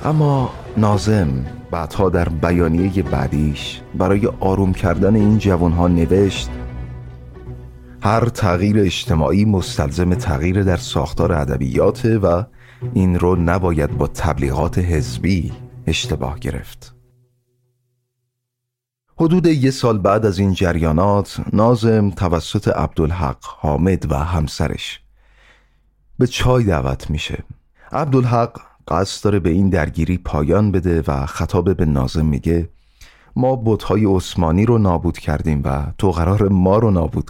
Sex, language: male, Persian